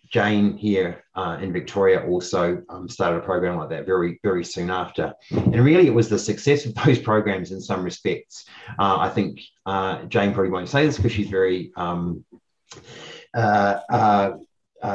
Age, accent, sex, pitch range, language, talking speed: 30-49, Australian, male, 90-110 Hz, English, 175 wpm